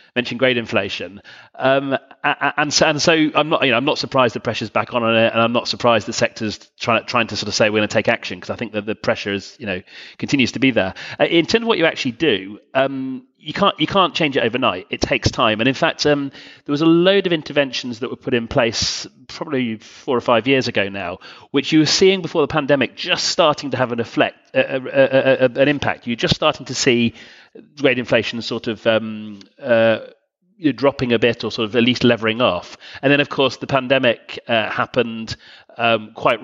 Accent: British